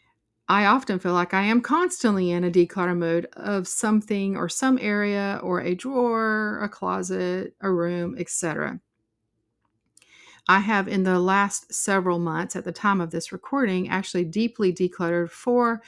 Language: English